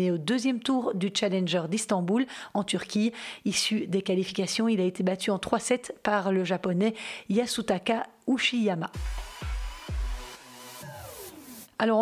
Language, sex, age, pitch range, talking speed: French, female, 30-49, 195-230 Hz, 115 wpm